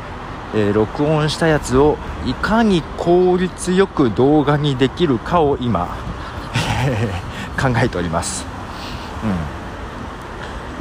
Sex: male